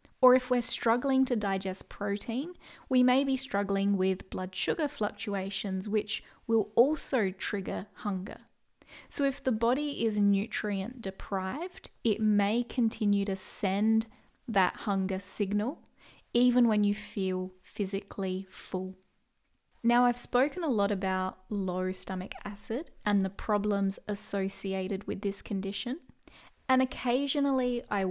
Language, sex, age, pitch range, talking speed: English, female, 20-39, 195-245 Hz, 130 wpm